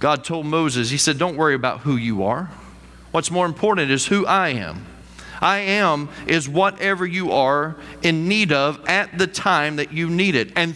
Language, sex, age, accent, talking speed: English, male, 40-59, American, 195 wpm